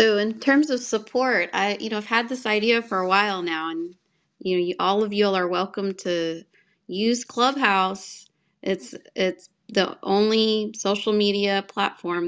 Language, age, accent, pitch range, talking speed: English, 30-49, American, 185-220 Hz, 170 wpm